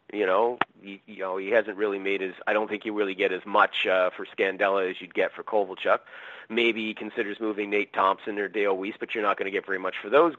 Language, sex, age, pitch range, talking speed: English, male, 40-59, 105-120 Hz, 260 wpm